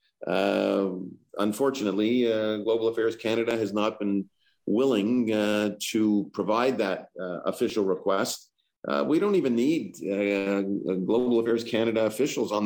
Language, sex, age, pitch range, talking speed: English, male, 50-69, 95-110 Hz, 135 wpm